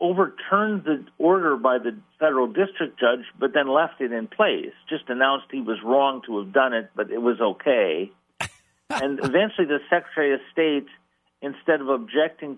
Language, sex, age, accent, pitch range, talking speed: English, male, 50-69, American, 110-145 Hz, 170 wpm